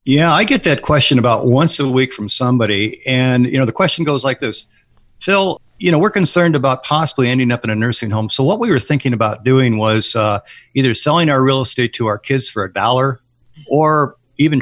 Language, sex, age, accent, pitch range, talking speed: English, male, 50-69, American, 110-135 Hz, 220 wpm